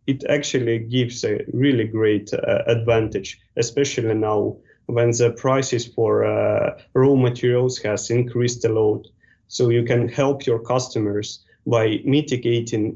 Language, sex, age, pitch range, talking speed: English, male, 20-39, 105-120 Hz, 135 wpm